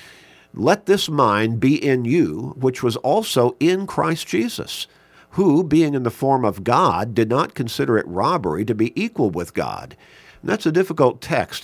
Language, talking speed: English, 175 wpm